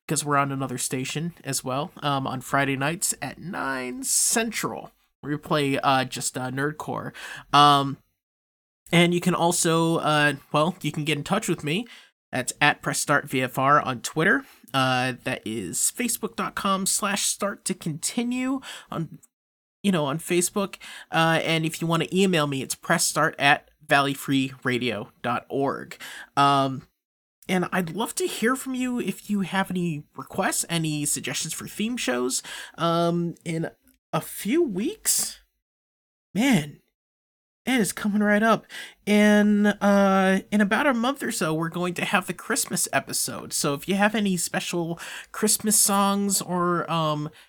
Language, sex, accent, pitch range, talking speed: English, male, American, 145-200 Hz, 150 wpm